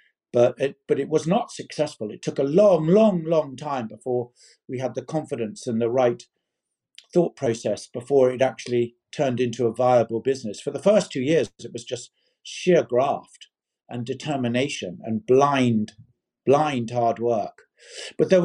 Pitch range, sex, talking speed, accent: 125-155 Hz, male, 165 wpm, British